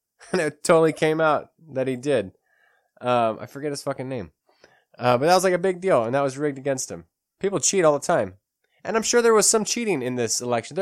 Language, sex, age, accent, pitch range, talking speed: English, male, 20-39, American, 130-185 Hz, 240 wpm